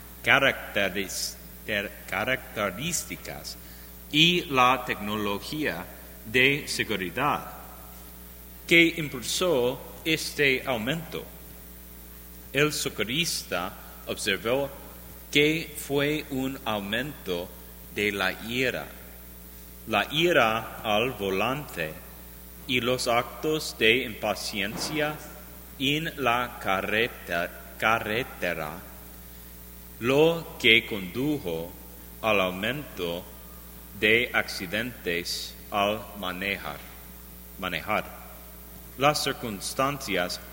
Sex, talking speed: male, 65 wpm